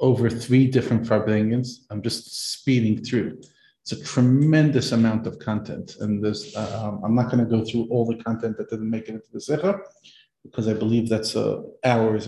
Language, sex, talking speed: English, male, 180 wpm